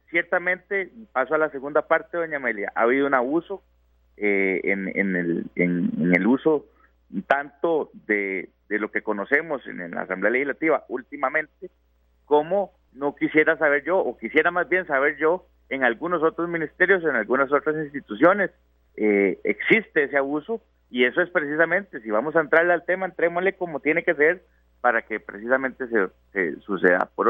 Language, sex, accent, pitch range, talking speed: Spanish, male, Mexican, 100-160 Hz, 165 wpm